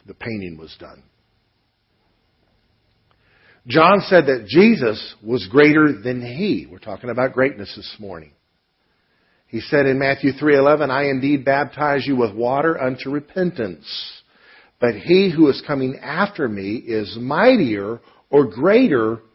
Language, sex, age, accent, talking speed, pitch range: English, male, 50-69, American, 130 wpm, 105-145 Hz